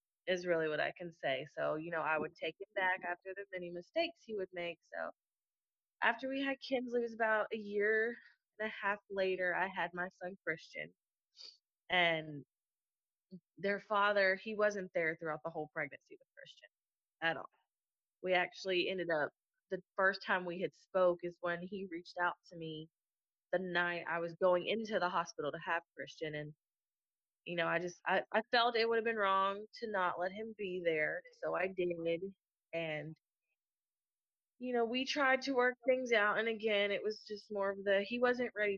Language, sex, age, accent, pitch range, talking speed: English, female, 20-39, American, 175-215 Hz, 190 wpm